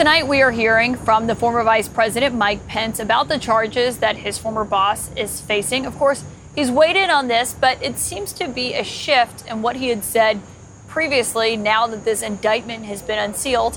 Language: English